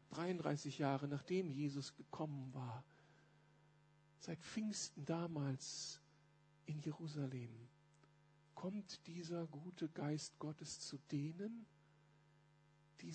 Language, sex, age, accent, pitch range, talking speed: German, male, 50-69, German, 155-205 Hz, 85 wpm